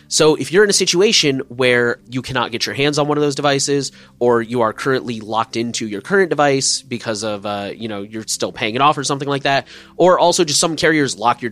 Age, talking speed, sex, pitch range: 30-49, 245 wpm, male, 115-155 Hz